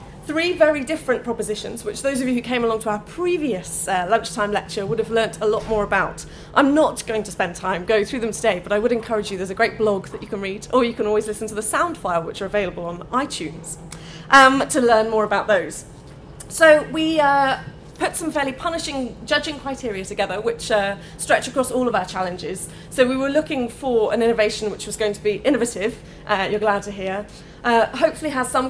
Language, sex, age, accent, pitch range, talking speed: English, female, 30-49, British, 195-235 Hz, 225 wpm